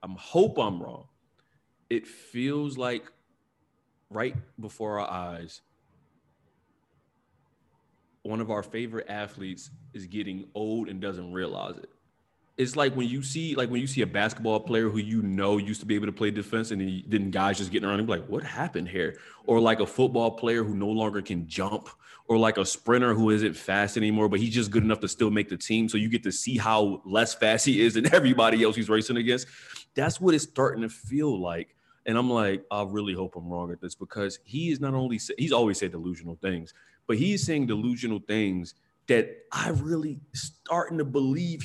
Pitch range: 100-120 Hz